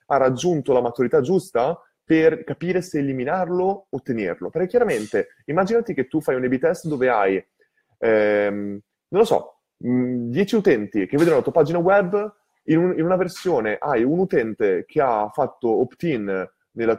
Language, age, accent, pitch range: Italian, 20-39, native, 125-180 Hz